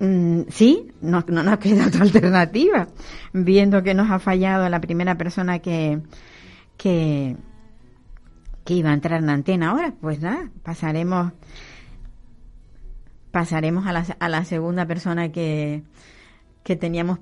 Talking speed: 125 wpm